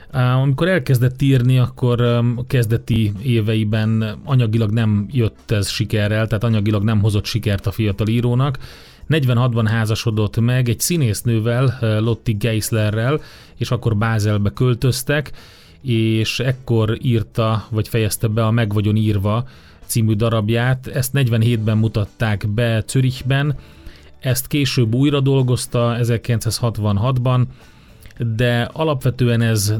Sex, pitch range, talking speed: male, 110-125 Hz, 110 wpm